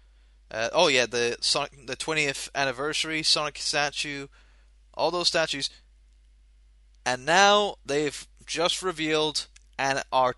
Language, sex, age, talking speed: English, male, 20-39, 115 wpm